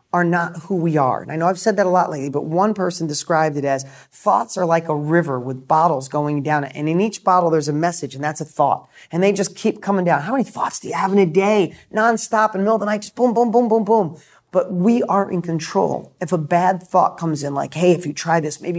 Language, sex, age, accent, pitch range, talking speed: English, male, 40-59, American, 155-200 Hz, 280 wpm